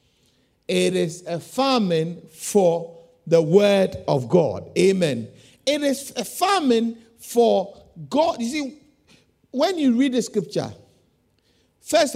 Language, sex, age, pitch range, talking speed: English, male, 50-69, 145-205 Hz, 120 wpm